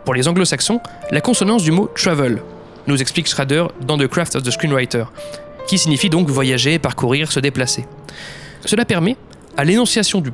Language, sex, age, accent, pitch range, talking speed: French, male, 20-39, French, 140-190 Hz, 195 wpm